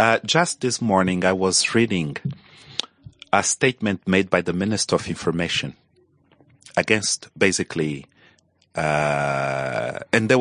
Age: 40-59